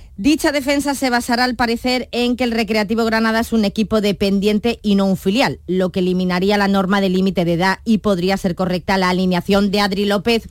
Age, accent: 20-39, Spanish